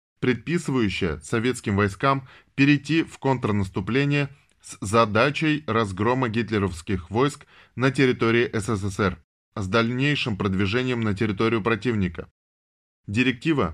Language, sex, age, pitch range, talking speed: Russian, male, 20-39, 105-130 Hz, 90 wpm